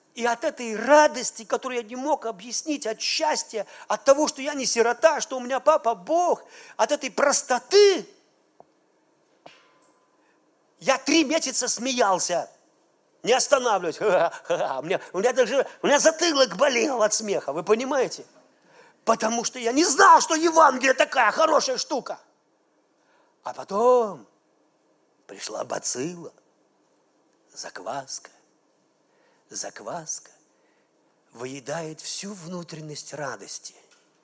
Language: Russian